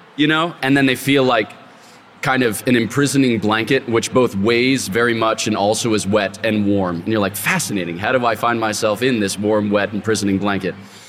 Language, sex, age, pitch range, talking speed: English, male, 20-39, 100-120 Hz, 205 wpm